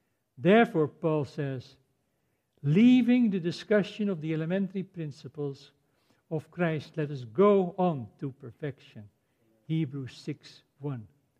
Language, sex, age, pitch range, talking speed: English, male, 60-79, 150-240 Hz, 110 wpm